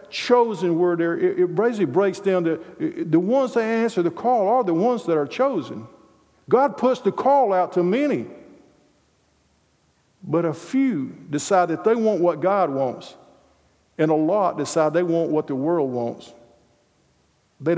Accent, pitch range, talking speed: American, 155-195 Hz, 160 wpm